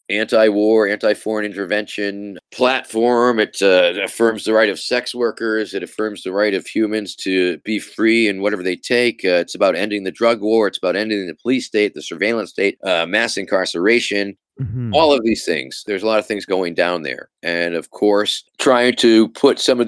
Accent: American